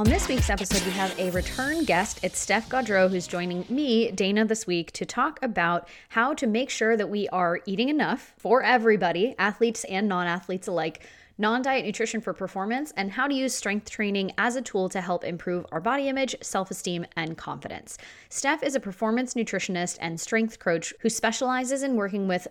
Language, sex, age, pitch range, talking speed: English, female, 20-39, 180-245 Hz, 190 wpm